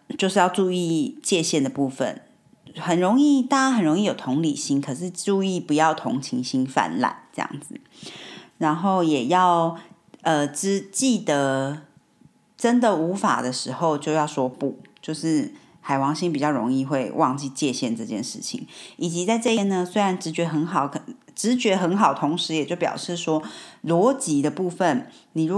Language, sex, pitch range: Chinese, female, 145-190 Hz